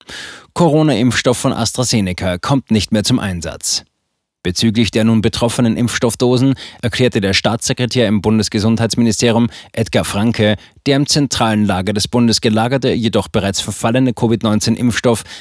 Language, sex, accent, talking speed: German, male, German, 120 wpm